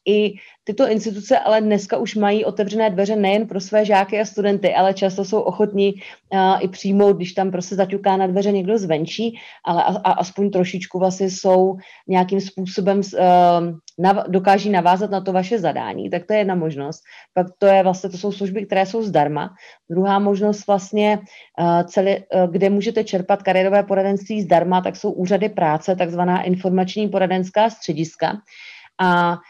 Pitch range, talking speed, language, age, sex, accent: 185-210 Hz, 170 wpm, English, 30-49, female, Czech